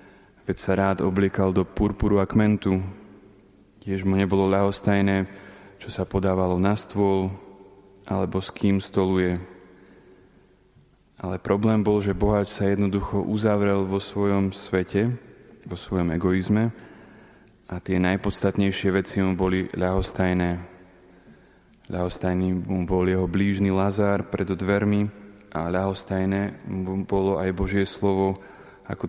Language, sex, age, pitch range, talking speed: Slovak, male, 20-39, 95-100 Hz, 120 wpm